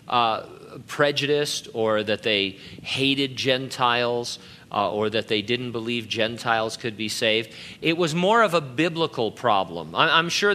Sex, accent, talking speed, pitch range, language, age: male, American, 155 wpm, 120-150 Hz, English, 40-59